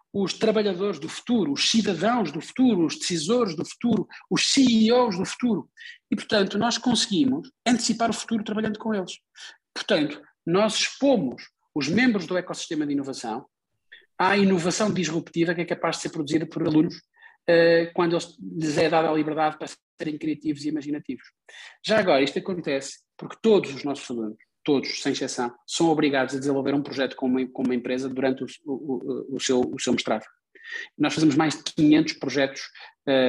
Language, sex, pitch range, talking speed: Portuguese, male, 145-215 Hz, 175 wpm